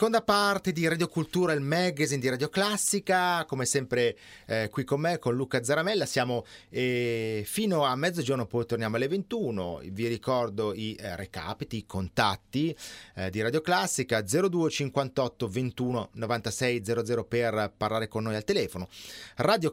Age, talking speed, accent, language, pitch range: 30-49, 150 wpm, native, Italian, 110-145 Hz